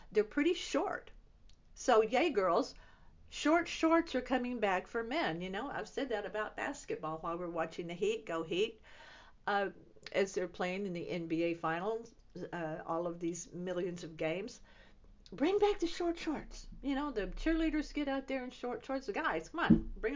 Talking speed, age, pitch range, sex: 185 wpm, 50-69, 170-255 Hz, female